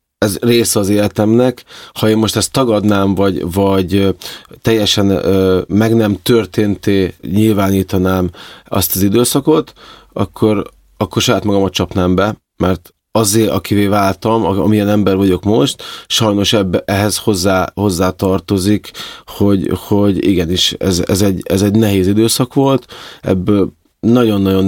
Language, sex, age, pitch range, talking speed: Hungarian, male, 30-49, 95-110 Hz, 115 wpm